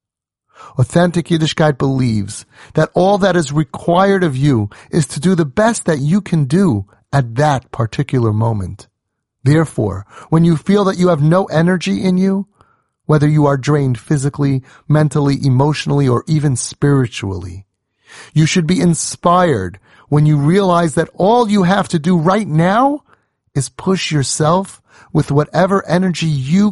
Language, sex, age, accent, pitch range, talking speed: English, male, 30-49, American, 120-170 Hz, 150 wpm